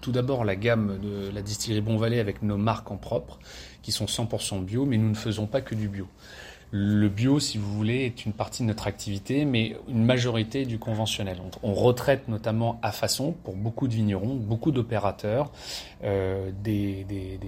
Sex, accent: male, French